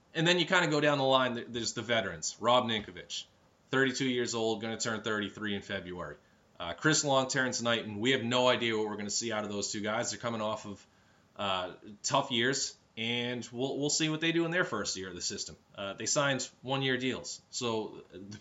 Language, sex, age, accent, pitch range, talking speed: English, male, 20-39, American, 110-135 Hz, 230 wpm